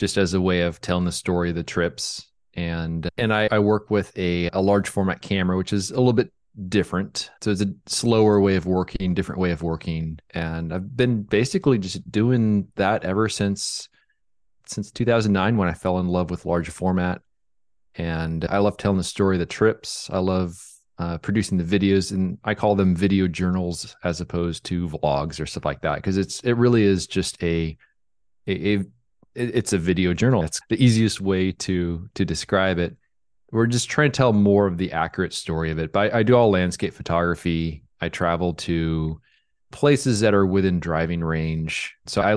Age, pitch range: 30-49, 85-100 Hz